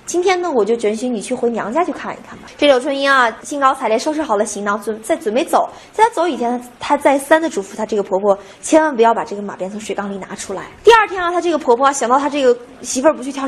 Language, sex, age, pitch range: Chinese, female, 20-39, 220-315 Hz